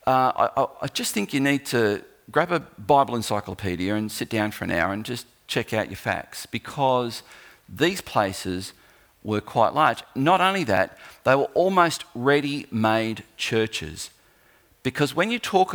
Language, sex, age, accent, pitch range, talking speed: English, male, 50-69, Australian, 105-140 Hz, 160 wpm